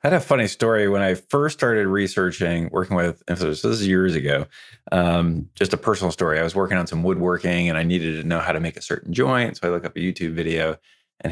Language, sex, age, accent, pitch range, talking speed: English, male, 20-39, American, 85-105 Hz, 250 wpm